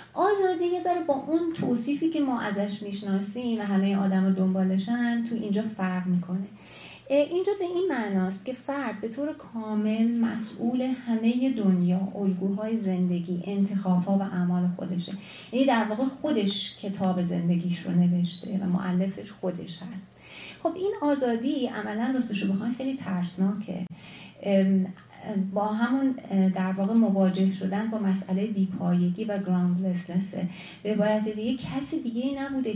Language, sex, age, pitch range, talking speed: Persian, female, 30-49, 185-235 Hz, 145 wpm